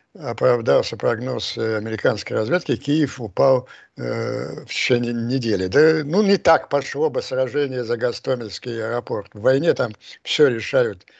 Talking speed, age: 135 wpm, 60-79